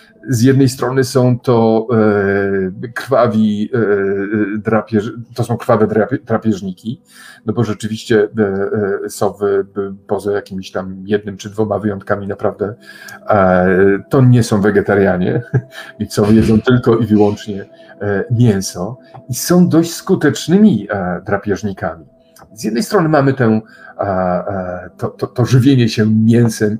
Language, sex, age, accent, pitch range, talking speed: Polish, male, 50-69, native, 100-125 Hz, 135 wpm